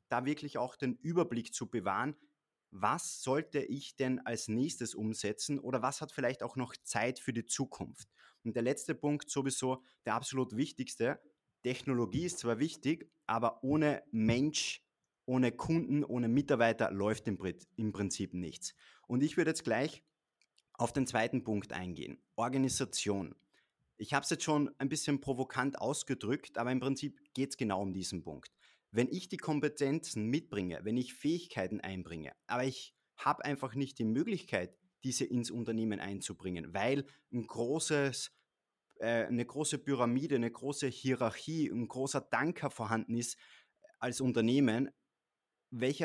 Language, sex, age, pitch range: German, male, 30-49, 115-140 Hz